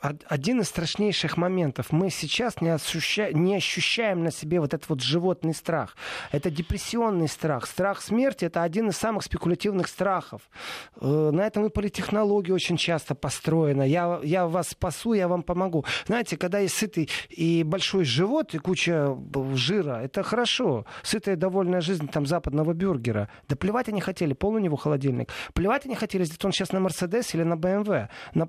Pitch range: 155-200 Hz